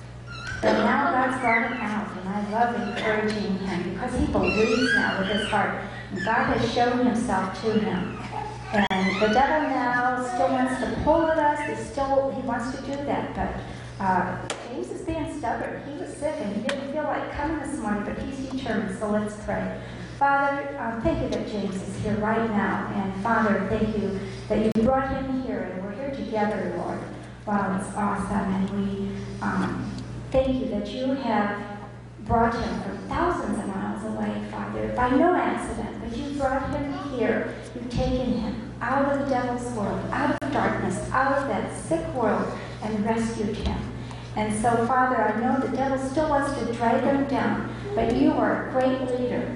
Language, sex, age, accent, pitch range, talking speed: English, female, 40-59, American, 210-265 Hz, 185 wpm